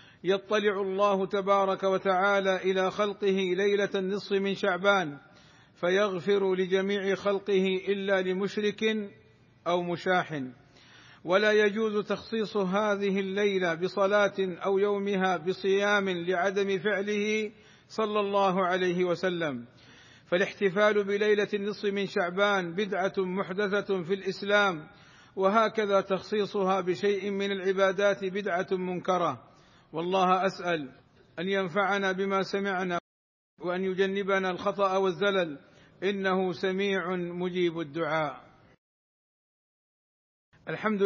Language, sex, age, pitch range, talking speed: Arabic, male, 50-69, 180-200 Hz, 90 wpm